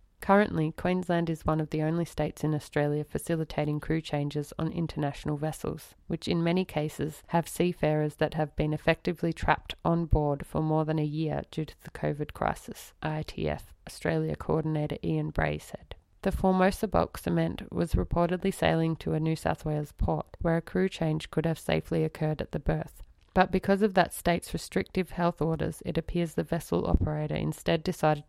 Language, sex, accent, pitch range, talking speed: English, female, Australian, 150-170 Hz, 180 wpm